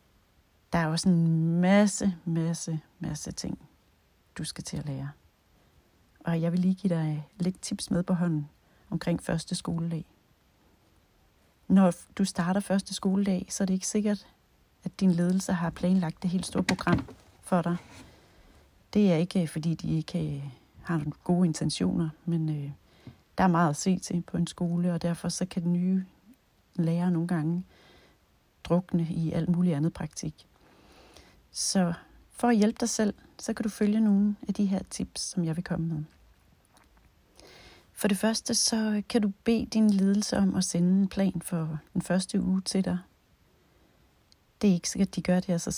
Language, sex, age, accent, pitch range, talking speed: Danish, female, 40-59, native, 165-195 Hz, 175 wpm